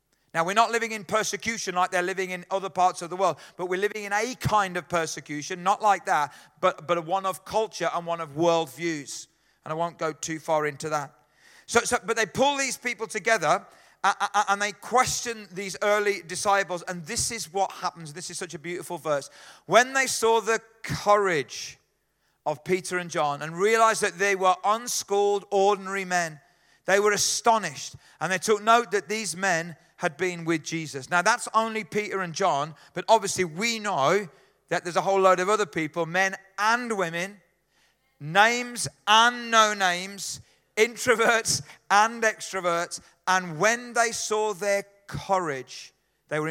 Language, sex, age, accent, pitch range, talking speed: English, male, 40-59, British, 165-215 Hz, 175 wpm